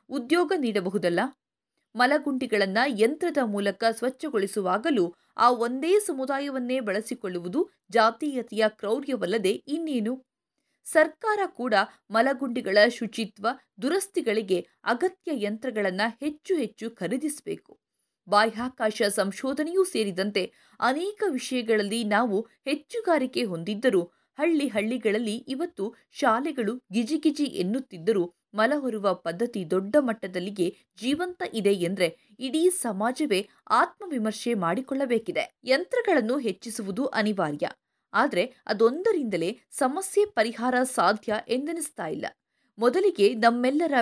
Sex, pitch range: female, 205-285 Hz